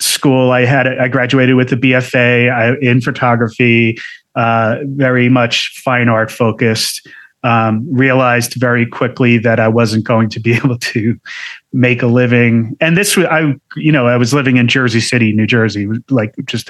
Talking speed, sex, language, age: 170 wpm, male, English, 30-49